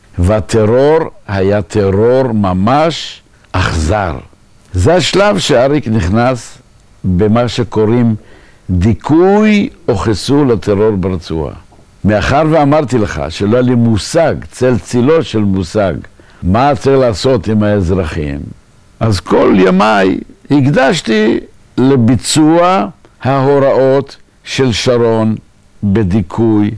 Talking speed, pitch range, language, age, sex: 90 wpm, 100-135 Hz, Hebrew, 60-79, male